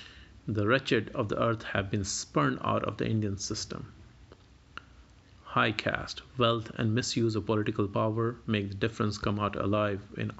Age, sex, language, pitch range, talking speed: 50-69, male, Hindi, 105-125 Hz, 160 wpm